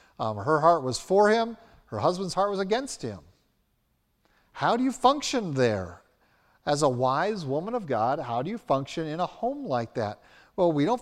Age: 50-69